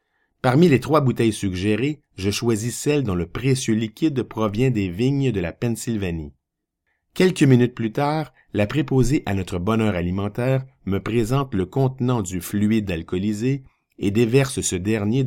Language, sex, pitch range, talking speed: French, male, 95-130 Hz, 155 wpm